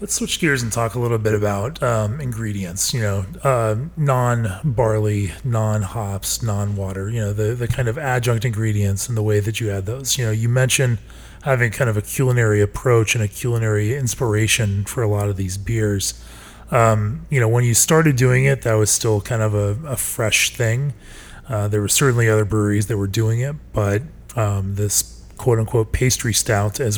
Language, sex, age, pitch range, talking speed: English, male, 30-49, 105-125 Hz, 190 wpm